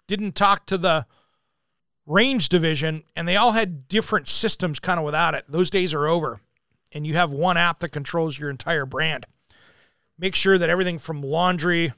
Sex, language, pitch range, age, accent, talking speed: male, English, 150-190 Hz, 40-59, American, 180 wpm